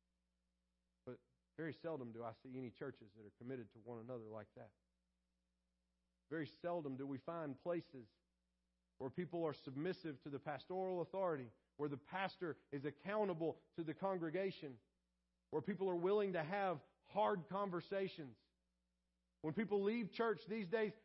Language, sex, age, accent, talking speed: English, male, 40-59, American, 145 wpm